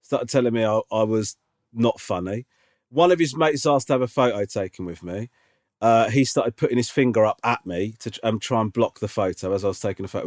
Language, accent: English, British